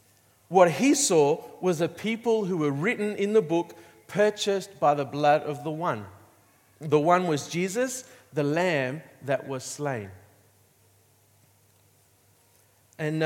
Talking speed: 130 wpm